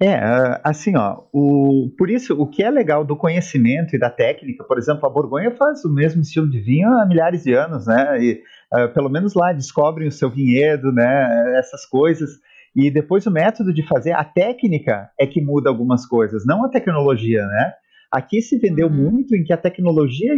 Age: 40-59